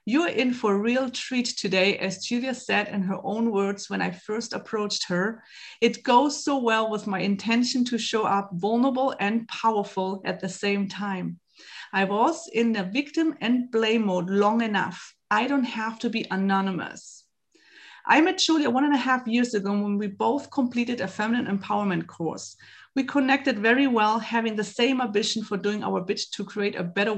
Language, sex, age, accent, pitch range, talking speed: English, female, 30-49, German, 200-260 Hz, 190 wpm